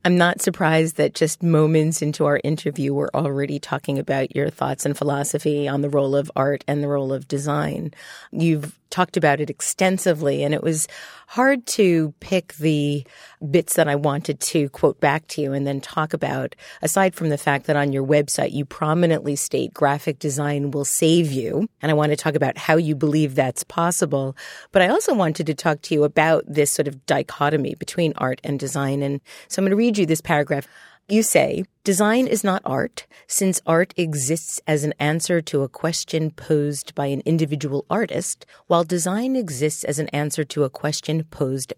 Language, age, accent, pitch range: English, 40-59, American, 145-170 Hz